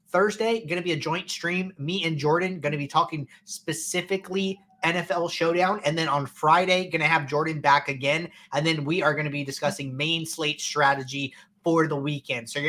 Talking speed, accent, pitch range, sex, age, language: 205 wpm, American, 150-190 Hz, male, 20-39, English